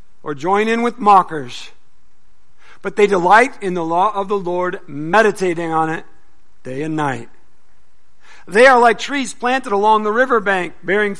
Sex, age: male, 50-69